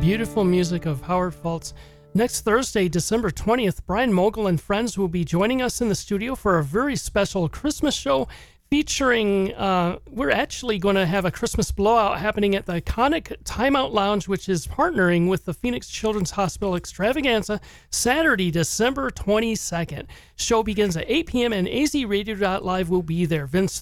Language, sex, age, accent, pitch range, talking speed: English, male, 40-59, American, 175-225 Hz, 170 wpm